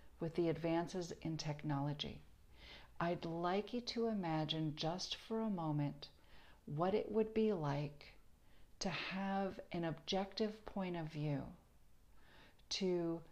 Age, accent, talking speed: 50-69, American, 120 wpm